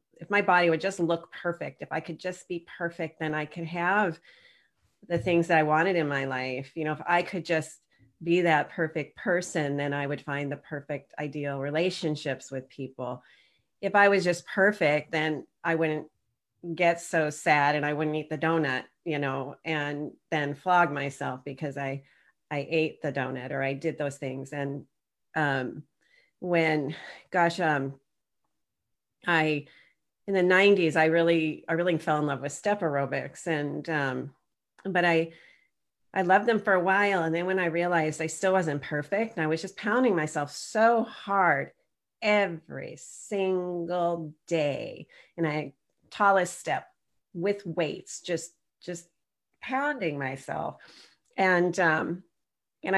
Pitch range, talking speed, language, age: 150-180 Hz, 160 wpm, English, 40-59